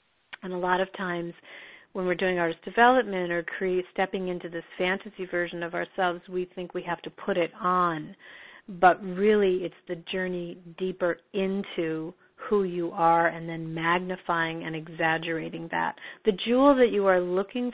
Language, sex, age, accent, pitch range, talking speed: Spanish, female, 40-59, American, 170-195 Hz, 160 wpm